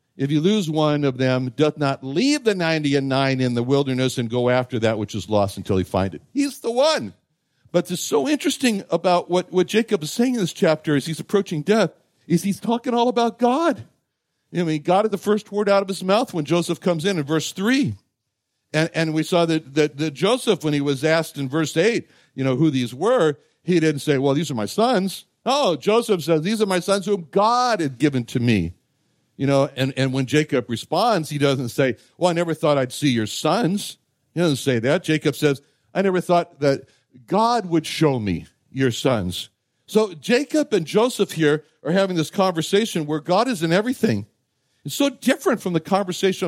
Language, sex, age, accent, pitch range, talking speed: English, male, 60-79, American, 135-195 Hz, 215 wpm